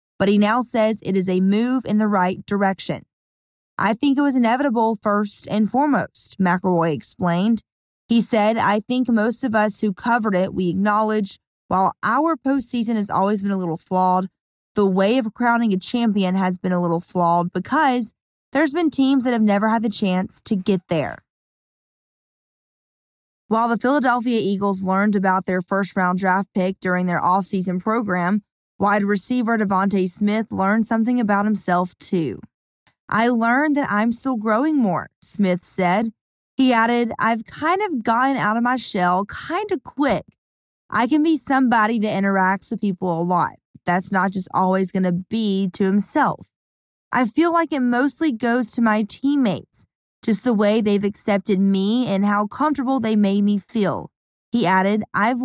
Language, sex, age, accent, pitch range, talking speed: English, female, 20-39, American, 190-235 Hz, 170 wpm